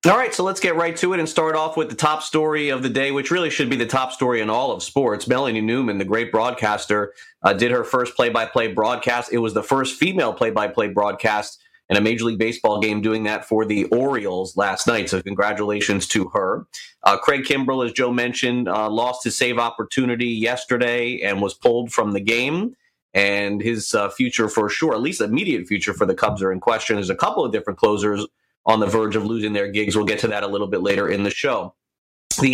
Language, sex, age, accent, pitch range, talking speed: English, male, 30-49, American, 110-145 Hz, 225 wpm